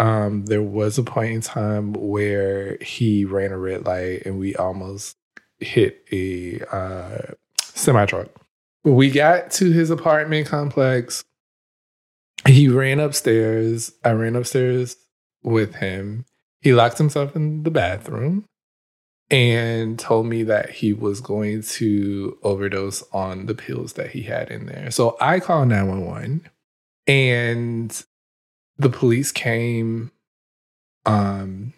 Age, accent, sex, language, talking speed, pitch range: 20-39, American, male, English, 125 wpm, 105-135 Hz